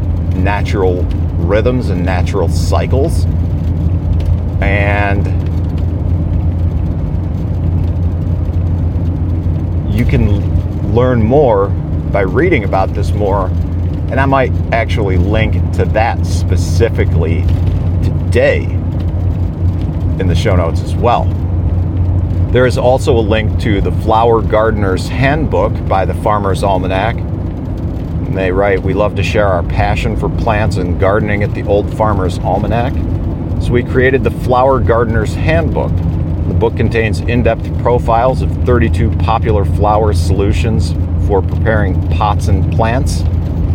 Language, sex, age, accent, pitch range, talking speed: English, male, 50-69, American, 85-105 Hz, 115 wpm